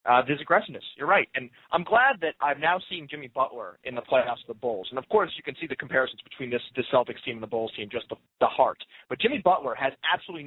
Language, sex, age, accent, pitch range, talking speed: English, male, 30-49, American, 120-165 Hz, 265 wpm